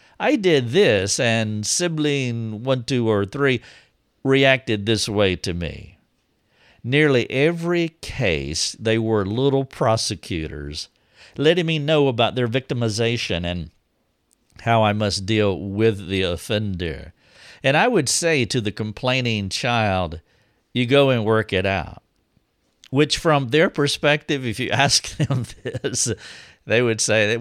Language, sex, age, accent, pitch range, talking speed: English, male, 50-69, American, 95-135 Hz, 135 wpm